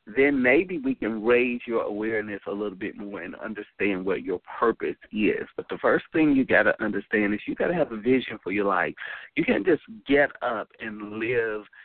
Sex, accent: male, American